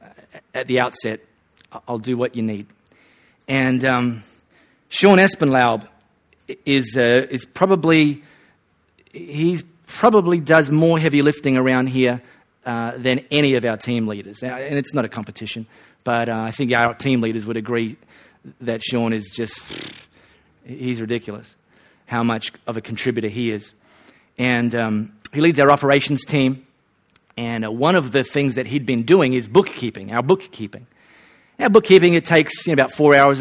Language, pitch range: English, 115-150 Hz